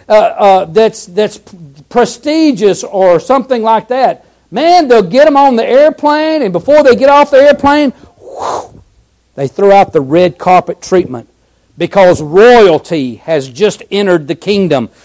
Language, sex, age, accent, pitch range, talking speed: English, male, 60-79, American, 180-270 Hz, 150 wpm